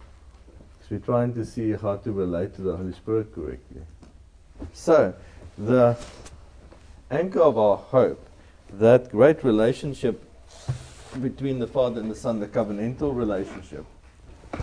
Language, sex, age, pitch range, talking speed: English, male, 50-69, 80-120 Hz, 125 wpm